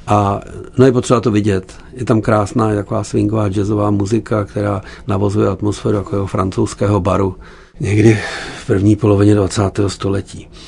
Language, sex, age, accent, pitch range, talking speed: Czech, male, 50-69, native, 105-115 Hz, 145 wpm